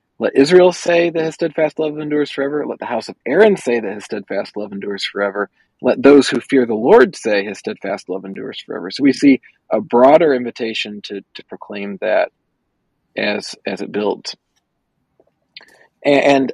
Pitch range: 110-140 Hz